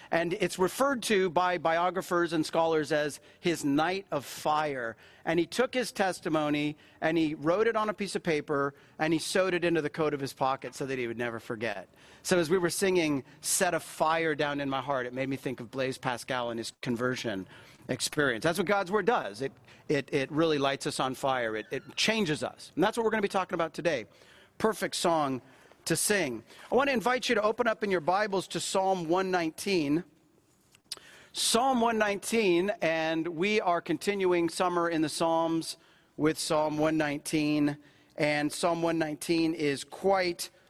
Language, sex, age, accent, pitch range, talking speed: English, male, 40-59, American, 150-185 Hz, 190 wpm